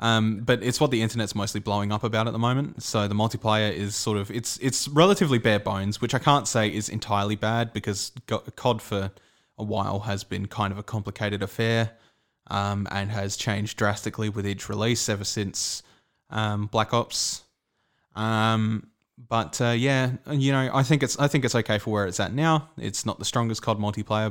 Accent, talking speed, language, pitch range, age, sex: Australian, 195 wpm, English, 105-120 Hz, 20-39, male